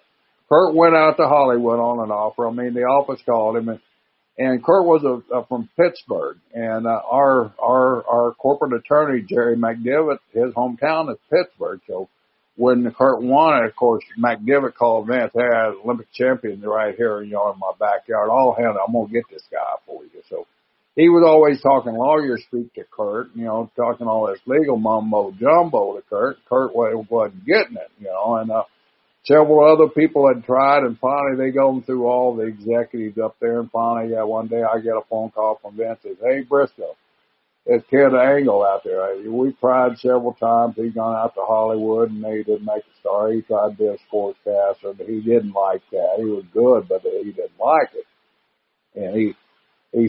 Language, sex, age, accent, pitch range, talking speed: English, male, 60-79, American, 110-140 Hz, 195 wpm